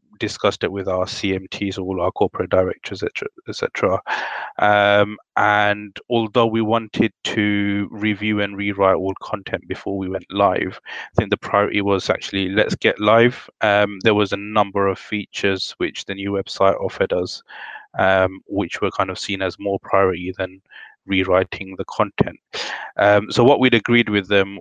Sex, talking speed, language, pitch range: male, 165 wpm, English, 95-105 Hz